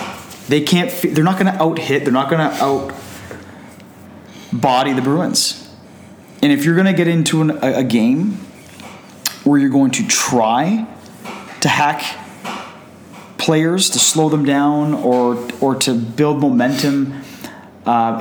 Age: 30-49